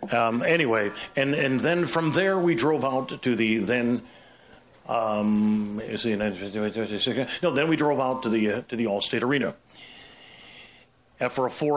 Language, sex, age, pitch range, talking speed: English, male, 50-69, 110-130 Hz, 150 wpm